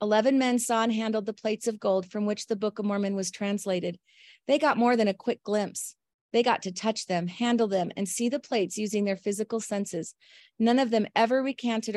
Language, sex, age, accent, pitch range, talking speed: English, female, 30-49, American, 190-225 Hz, 220 wpm